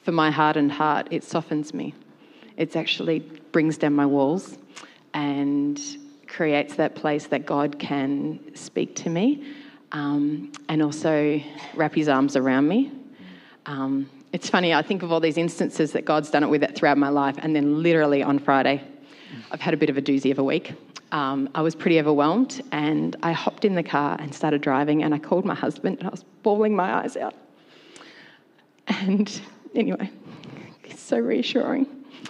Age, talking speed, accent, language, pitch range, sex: 30-49, 175 wpm, Australian, English, 150-245 Hz, female